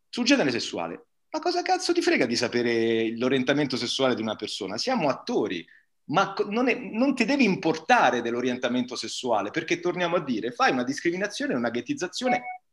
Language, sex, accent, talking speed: Italian, male, native, 165 wpm